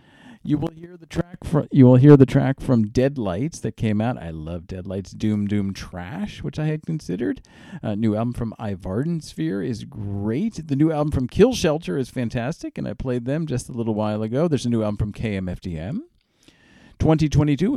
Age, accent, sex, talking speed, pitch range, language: 40-59, American, male, 200 wpm, 110-160 Hz, English